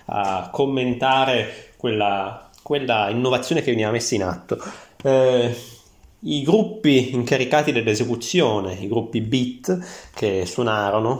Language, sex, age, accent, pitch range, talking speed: Italian, male, 20-39, native, 110-140 Hz, 105 wpm